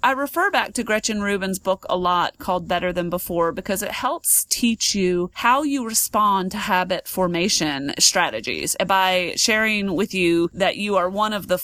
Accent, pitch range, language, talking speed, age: American, 180-225 Hz, English, 180 wpm, 30-49